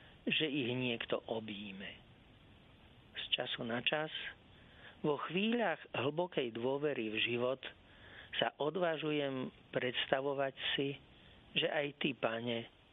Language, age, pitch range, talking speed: Slovak, 50-69, 115-145 Hz, 100 wpm